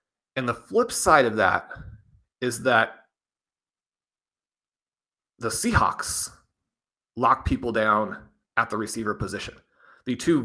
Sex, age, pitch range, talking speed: male, 30-49, 120-160 Hz, 110 wpm